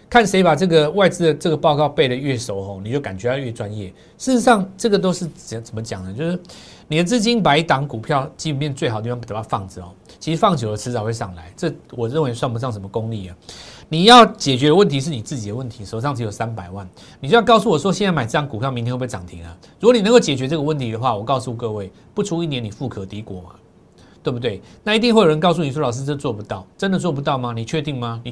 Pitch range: 115-170 Hz